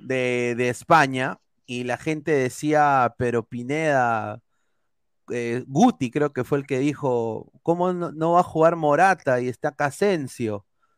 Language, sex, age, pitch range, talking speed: Spanish, male, 30-49, 130-180 Hz, 150 wpm